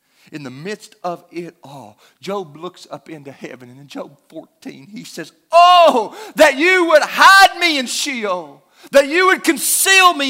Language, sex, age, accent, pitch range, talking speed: English, male, 40-59, American, 190-300 Hz, 175 wpm